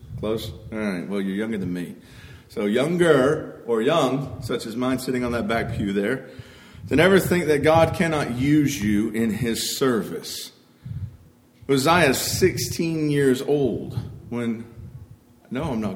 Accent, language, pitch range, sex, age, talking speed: American, English, 120-160 Hz, male, 40-59, 155 wpm